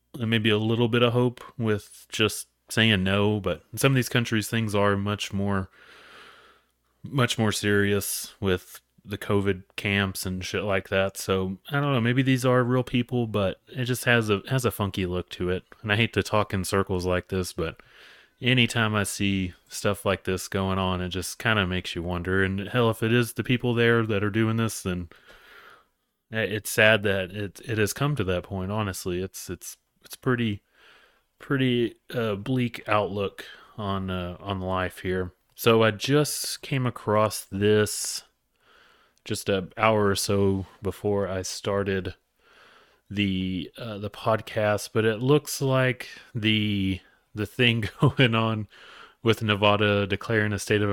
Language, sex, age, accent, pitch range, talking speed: English, male, 30-49, American, 95-115 Hz, 175 wpm